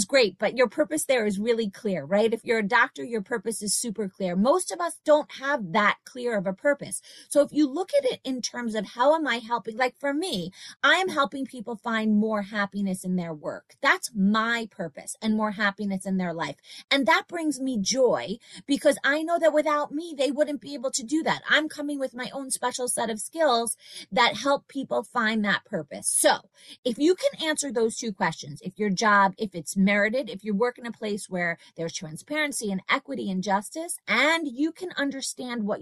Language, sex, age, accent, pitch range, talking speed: English, female, 30-49, American, 195-275 Hz, 215 wpm